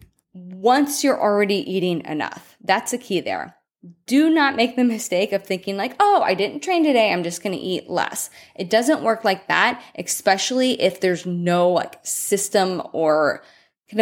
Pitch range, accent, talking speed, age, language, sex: 180-265 Hz, American, 175 wpm, 20-39, English, female